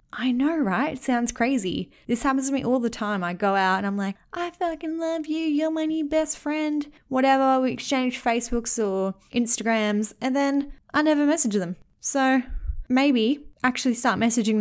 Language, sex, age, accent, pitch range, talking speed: English, female, 10-29, Australian, 190-260 Hz, 180 wpm